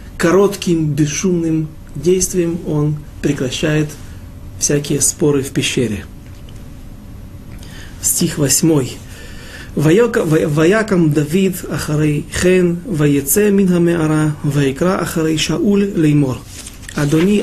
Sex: male